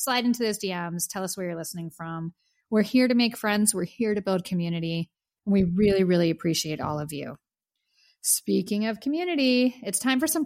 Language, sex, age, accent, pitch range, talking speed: English, female, 30-49, American, 175-250 Hz, 200 wpm